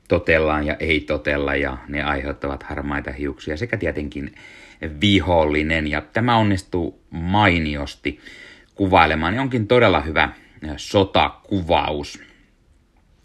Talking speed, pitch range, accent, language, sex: 100 wpm, 75-95 Hz, native, Finnish, male